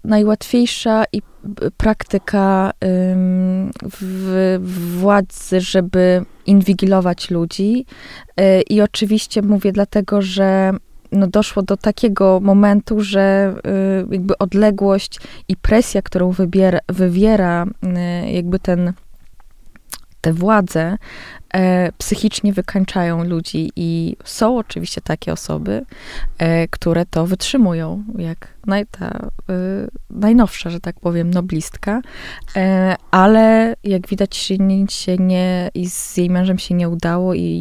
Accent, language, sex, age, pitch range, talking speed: native, Polish, female, 20-39, 180-205 Hz, 105 wpm